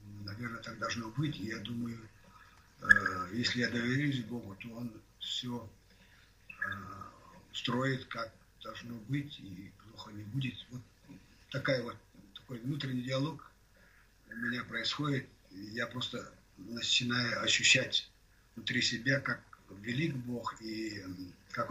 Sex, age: male, 50-69